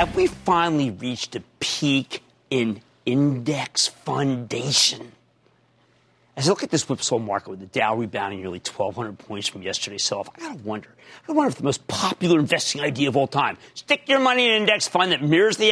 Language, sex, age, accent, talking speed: English, male, 40-59, American, 195 wpm